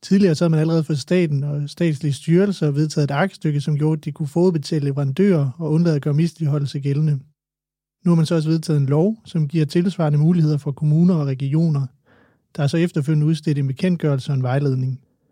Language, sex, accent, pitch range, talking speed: Danish, male, native, 145-170 Hz, 205 wpm